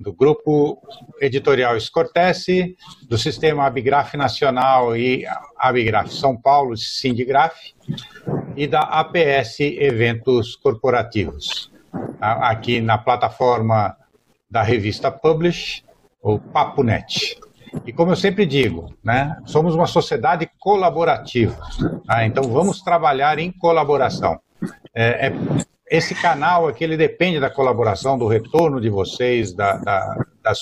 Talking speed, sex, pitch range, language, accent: 110 wpm, male, 120-165 Hz, Portuguese, Brazilian